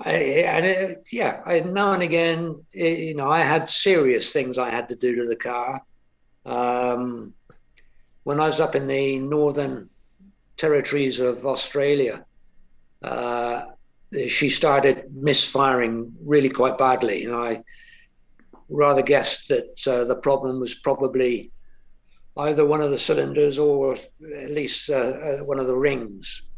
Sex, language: male, English